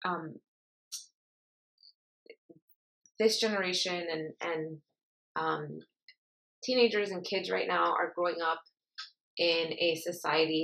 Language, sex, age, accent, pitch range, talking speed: English, female, 20-39, American, 160-210 Hz, 95 wpm